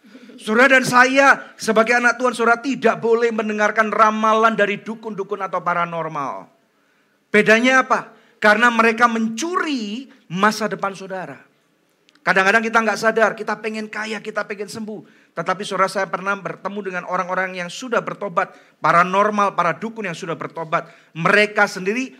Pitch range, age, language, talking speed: 165-225 Hz, 40-59, Indonesian, 140 wpm